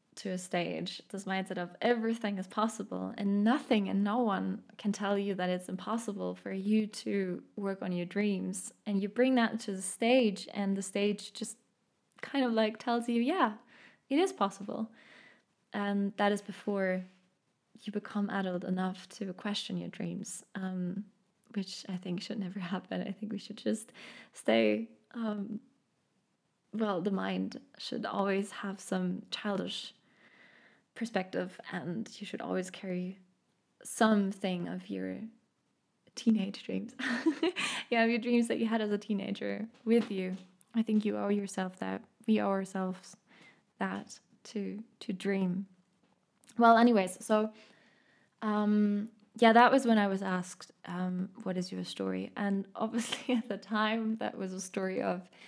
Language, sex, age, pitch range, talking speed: English, female, 20-39, 185-225 Hz, 155 wpm